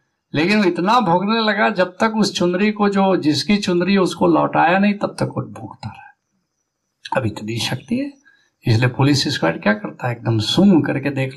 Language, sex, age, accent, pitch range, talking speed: Hindi, male, 60-79, native, 115-175 Hz, 180 wpm